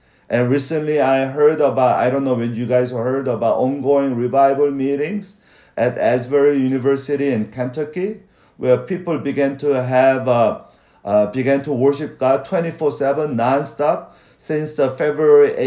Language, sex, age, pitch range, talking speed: English, male, 50-69, 125-150 Hz, 140 wpm